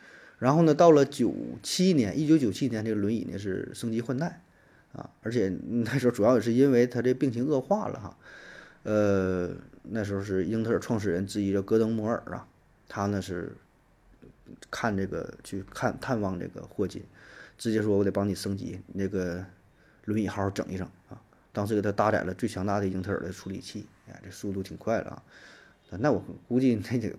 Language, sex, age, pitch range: Chinese, male, 20-39, 95-120 Hz